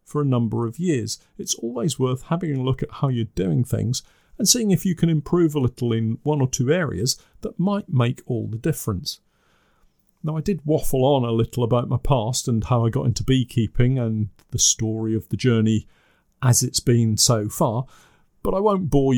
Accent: British